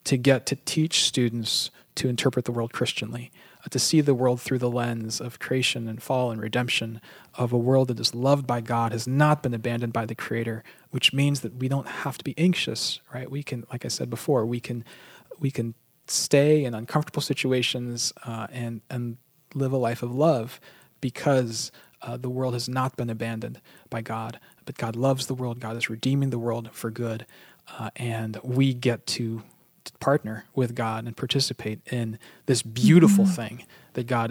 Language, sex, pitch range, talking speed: English, male, 115-135 Hz, 190 wpm